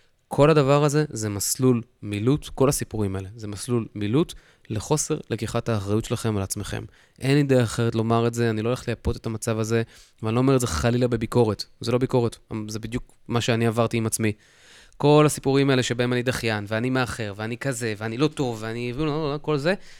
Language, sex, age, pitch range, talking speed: Hebrew, male, 20-39, 105-130 Hz, 195 wpm